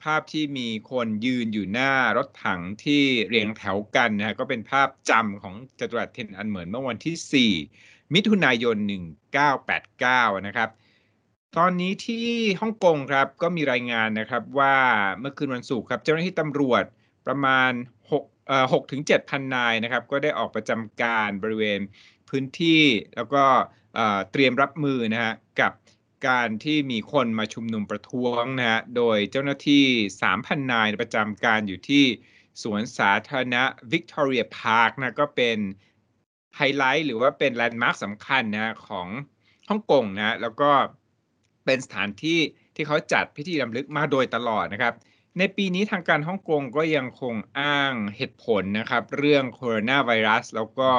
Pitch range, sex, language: 110-140 Hz, male, Thai